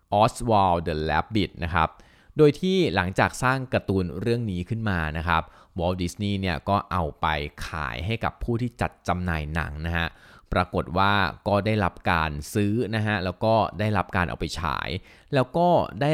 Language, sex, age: Thai, male, 20-39